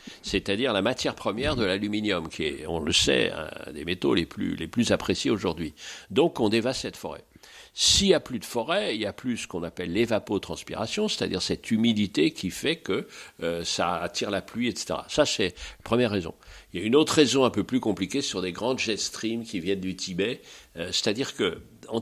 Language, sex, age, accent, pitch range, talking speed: French, male, 60-79, French, 95-145 Hz, 215 wpm